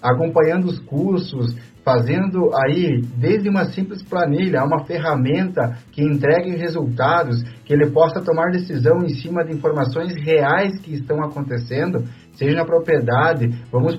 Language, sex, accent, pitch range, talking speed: Portuguese, male, Brazilian, 130-170 Hz, 135 wpm